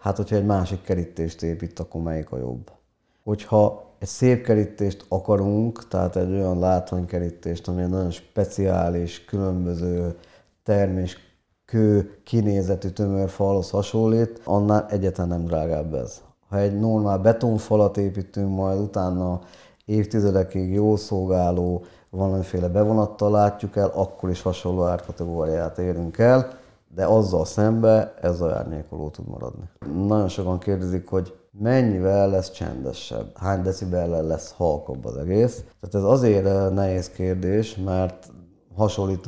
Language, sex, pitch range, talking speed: Hungarian, male, 90-105 Hz, 125 wpm